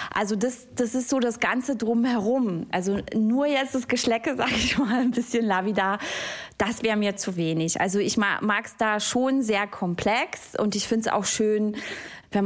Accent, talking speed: German, 190 wpm